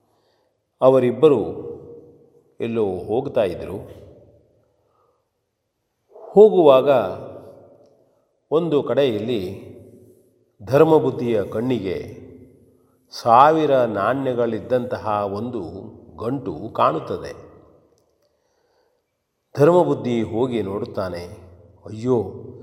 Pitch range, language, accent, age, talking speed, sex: 105-145 Hz, Kannada, native, 40-59, 45 wpm, male